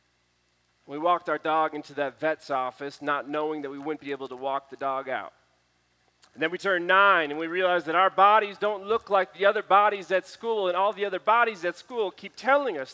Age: 30-49